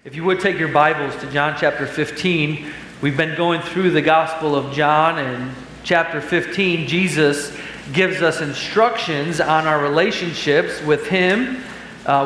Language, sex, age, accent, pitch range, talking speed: English, male, 40-59, American, 150-175 Hz, 150 wpm